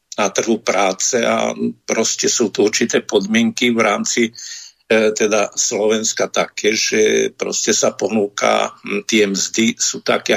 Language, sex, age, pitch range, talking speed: Slovak, male, 50-69, 105-115 Hz, 135 wpm